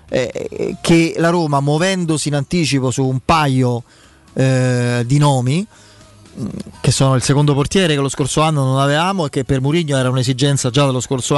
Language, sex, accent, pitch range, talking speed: Italian, male, native, 130-160 Hz, 170 wpm